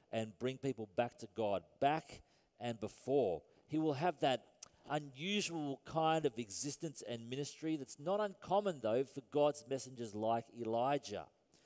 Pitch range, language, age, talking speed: 110-145 Hz, English, 40-59, 145 wpm